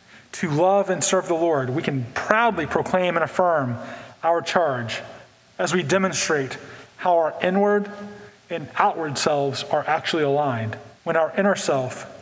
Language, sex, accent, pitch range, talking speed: English, male, American, 140-190 Hz, 145 wpm